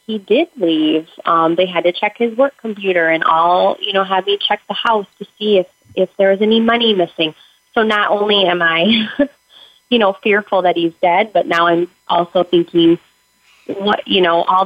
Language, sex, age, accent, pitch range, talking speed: English, female, 30-49, American, 165-200 Hz, 200 wpm